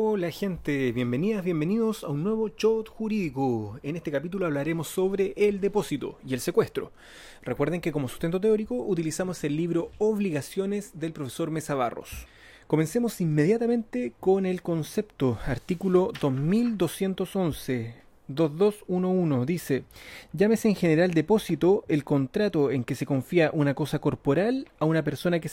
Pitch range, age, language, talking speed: 145-195 Hz, 30-49, Spanish, 135 wpm